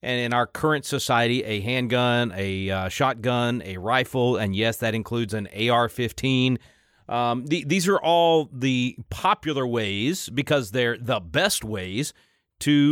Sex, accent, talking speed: male, American, 150 wpm